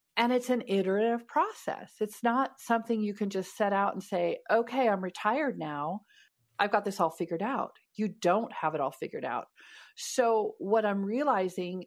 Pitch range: 180-235 Hz